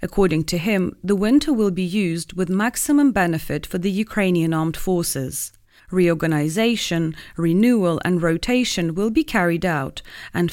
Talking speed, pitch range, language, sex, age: 140 wpm, 165-215 Hz, English, female, 30-49